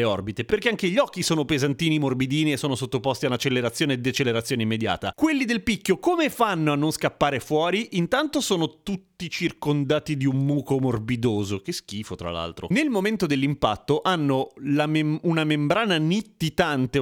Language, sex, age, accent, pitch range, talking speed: Italian, male, 30-49, native, 130-195 Hz, 160 wpm